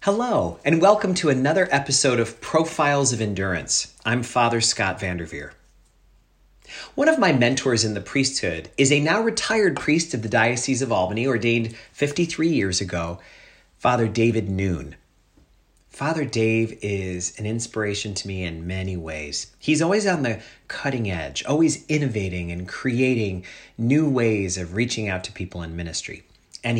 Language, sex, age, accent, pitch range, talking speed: English, male, 40-59, American, 95-135 Hz, 150 wpm